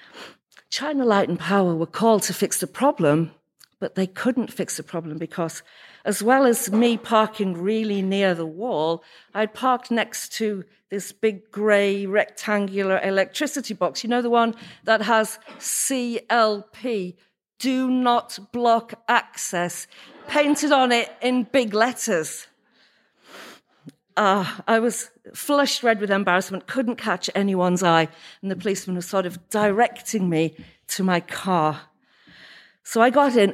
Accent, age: British, 50-69